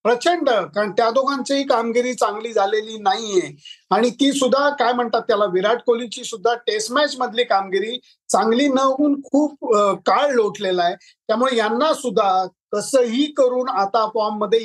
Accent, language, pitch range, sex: native, Marathi, 210-255 Hz, male